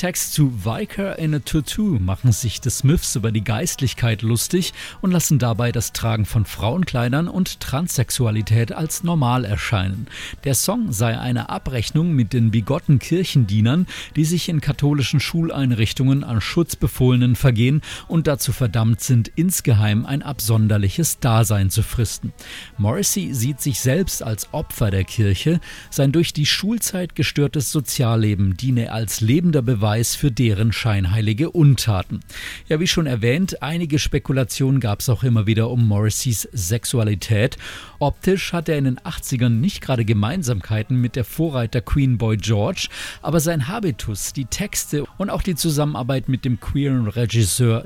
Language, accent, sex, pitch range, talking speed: German, German, male, 115-150 Hz, 145 wpm